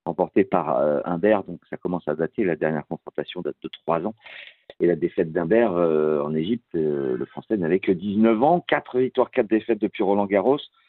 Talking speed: 200 wpm